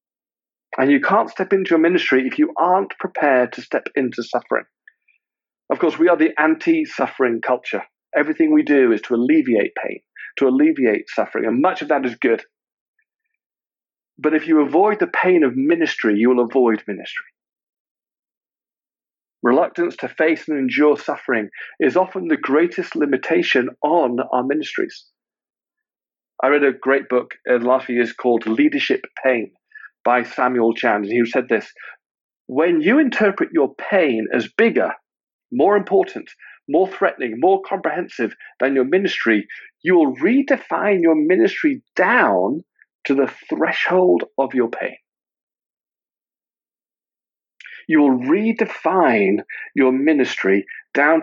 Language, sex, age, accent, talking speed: English, male, 40-59, British, 140 wpm